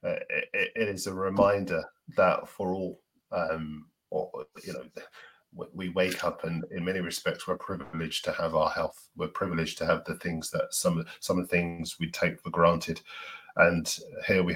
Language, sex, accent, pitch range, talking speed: English, male, British, 85-125 Hz, 180 wpm